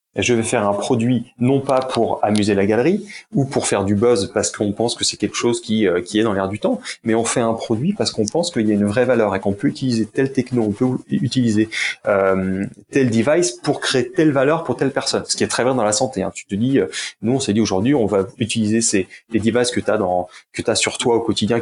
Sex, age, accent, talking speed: male, 30-49, French, 270 wpm